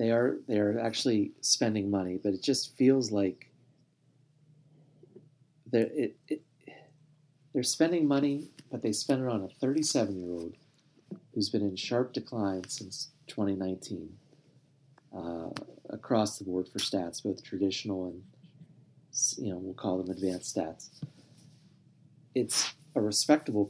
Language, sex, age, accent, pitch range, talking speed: English, male, 40-59, American, 100-145 Hz, 130 wpm